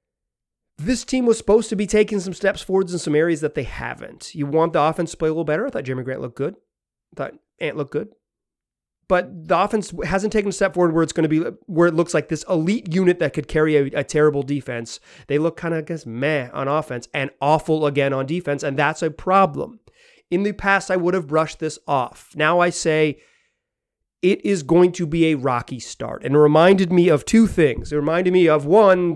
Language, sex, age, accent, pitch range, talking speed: English, male, 30-49, American, 145-190 Hz, 230 wpm